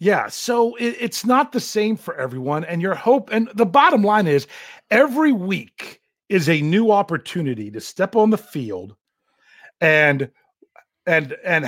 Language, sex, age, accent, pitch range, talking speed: English, male, 50-69, American, 140-200 Hz, 155 wpm